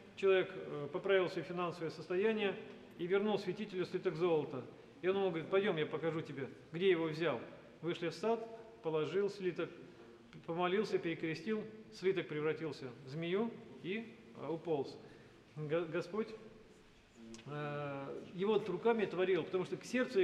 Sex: male